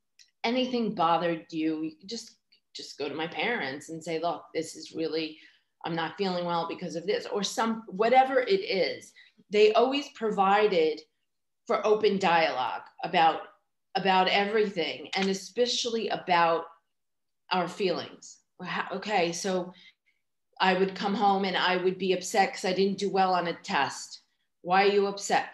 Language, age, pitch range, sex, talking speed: Hebrew, 40-59, 180-235 Hz, female, 155 wpm